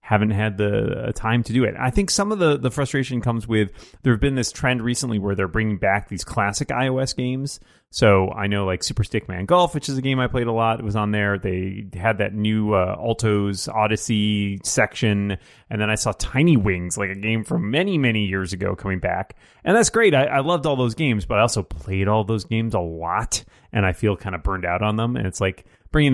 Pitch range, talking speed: 100-125 Hz, 240 wpm